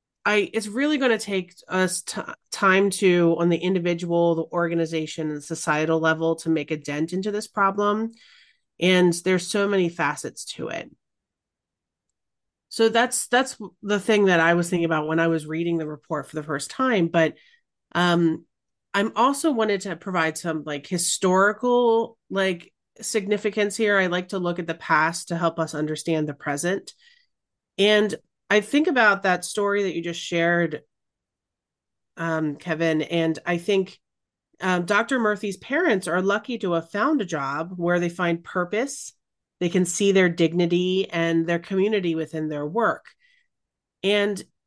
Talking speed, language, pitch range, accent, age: 160 wpm, English, 165-205 Hz, American, 30-49